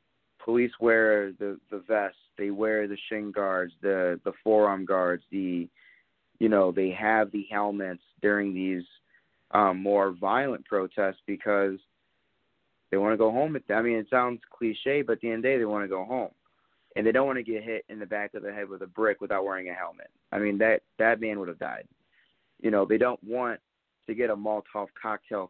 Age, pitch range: 20-39, 100-120 Hz